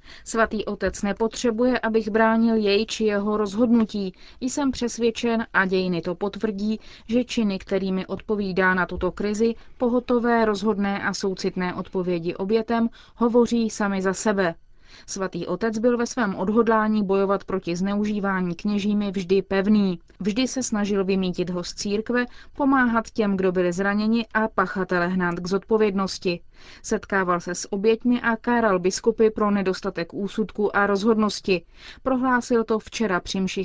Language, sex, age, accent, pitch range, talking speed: Czech, female, 30-49, native, 185-225 Hz, 135 wpm